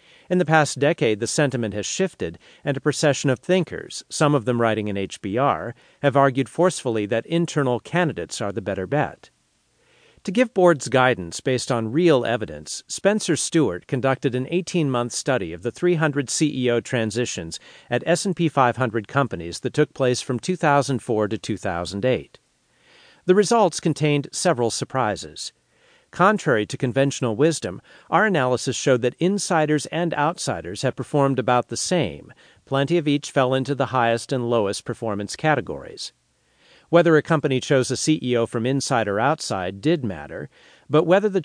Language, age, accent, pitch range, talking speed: English, 50-69, American, 115-155 Hz, 155 wpm